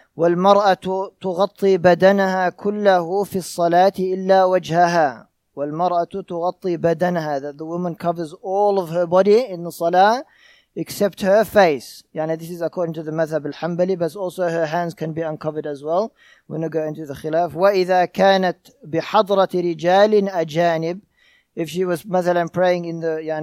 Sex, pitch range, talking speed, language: male, 160-190 Hz, 140 wpm, English